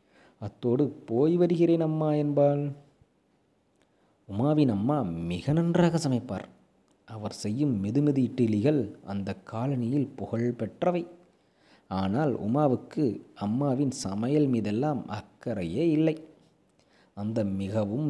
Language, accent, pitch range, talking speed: English, Indian, 110-150 Hz, 85 wpm